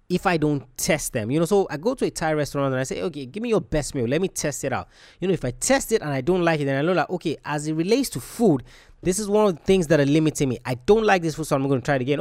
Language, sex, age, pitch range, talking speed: English, male, 20-39, 130-175 Hz, 350 wpm